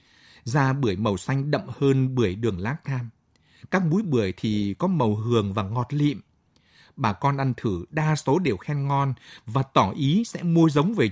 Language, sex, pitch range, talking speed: Vietnamese, male, 110-155 Hz, 195 wpm